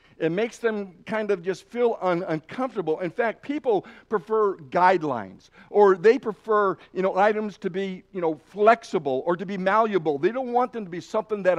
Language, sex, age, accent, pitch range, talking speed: English, male, 60-79, American, 165-215 Hz, 185 wpm